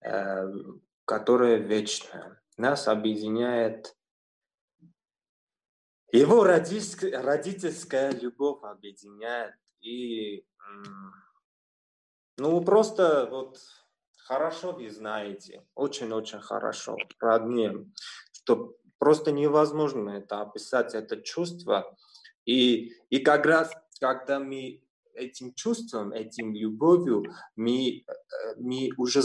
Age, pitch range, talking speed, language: 20-39, 110-145 Hz, 75 wpm, Russian